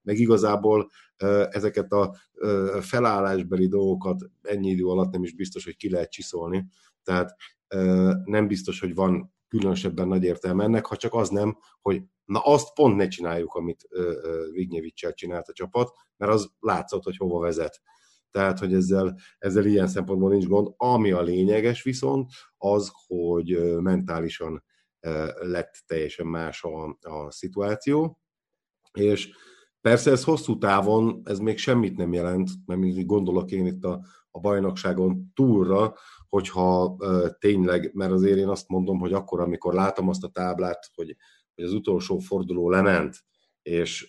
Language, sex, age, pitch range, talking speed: Hungarian, male, 50-69, 90-105 Hz, 145 wpm